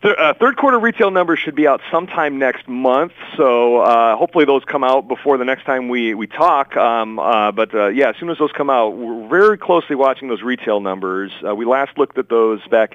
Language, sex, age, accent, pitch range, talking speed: English, male, 40-59, American, 90-120 Hz, 225 wpm